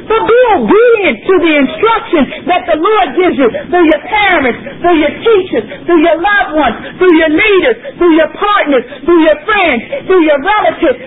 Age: 40-59